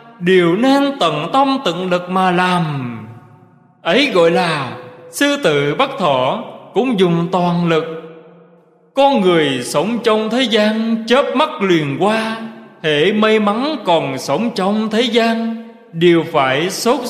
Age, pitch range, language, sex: 20-39, 165-230 Hz, Vietnamese, male